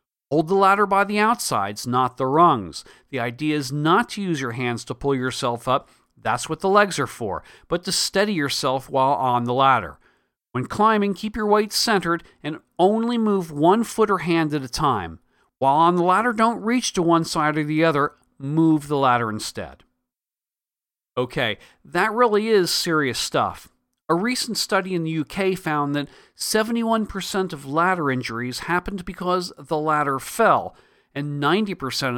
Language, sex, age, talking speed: English, male, 40-59, 170 wpm